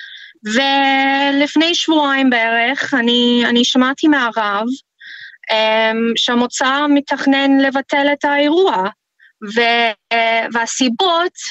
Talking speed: 75 wpm